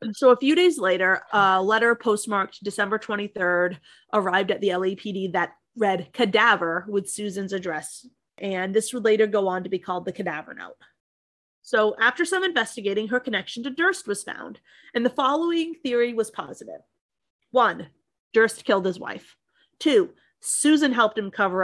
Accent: American